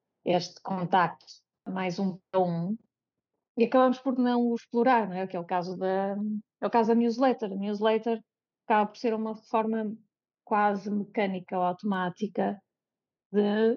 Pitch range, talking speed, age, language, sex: 190-230 Hz, 155 wpm, 30-49, Portuguese, female